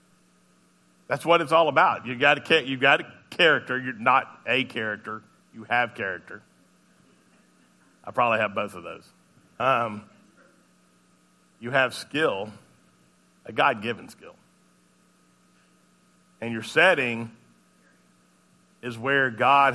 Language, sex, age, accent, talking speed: English, male, 50-69, American, 115 wpm